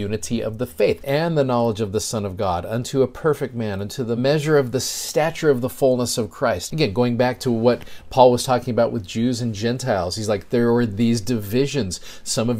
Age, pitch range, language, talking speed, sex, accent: 40-59, 110-135 Hz, English, 230 wpm, male, American